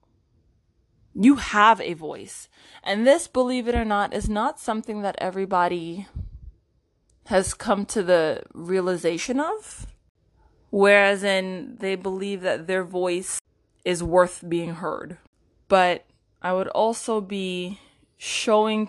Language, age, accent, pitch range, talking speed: English, 20-39, American, 175-215 Hz, 120 wpm